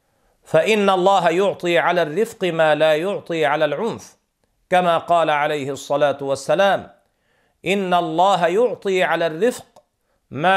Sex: male